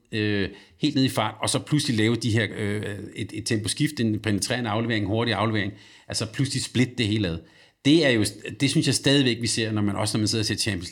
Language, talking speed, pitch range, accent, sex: Danish, 245 wpm, 105-125 Hz, native, male